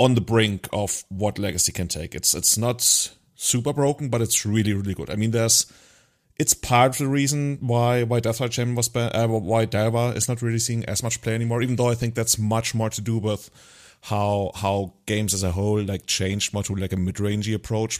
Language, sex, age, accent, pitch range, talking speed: English, male, 30-49, German, 100-120 Hz, 225 wpm